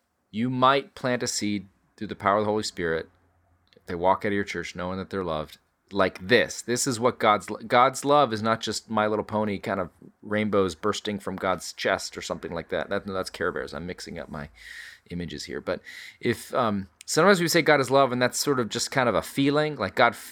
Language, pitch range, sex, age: English, 95-130 Hz, male, 30-49